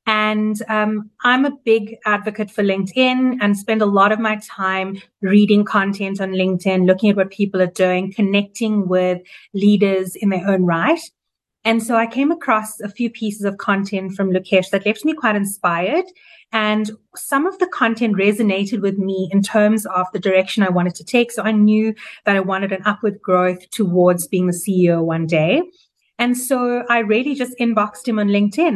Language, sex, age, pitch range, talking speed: English, female, 30-49, 190-225 Hz, 190 wpm